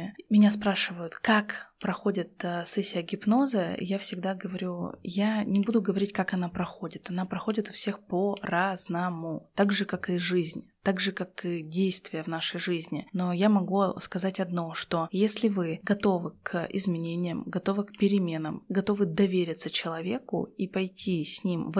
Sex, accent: female, native